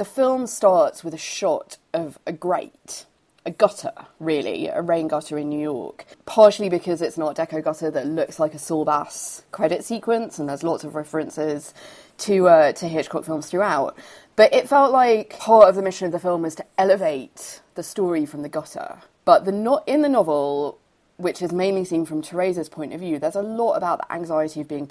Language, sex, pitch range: English, female, 155-200 Hz